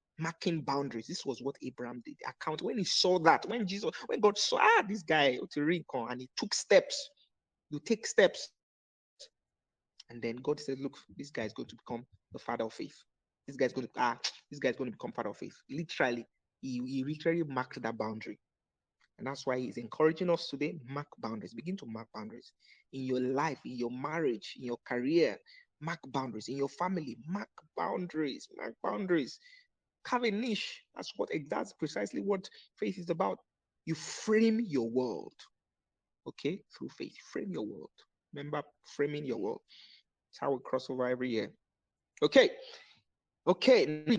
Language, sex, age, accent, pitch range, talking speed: English, male, 30-49, Nigerian, 130-190 Hz, 170 wpm